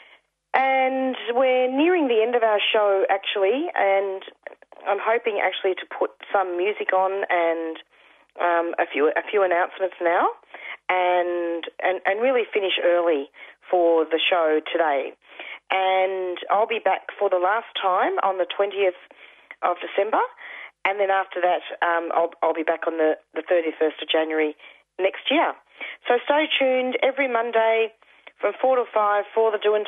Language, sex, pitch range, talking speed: English, female, 170-220 Hz, 155 wpm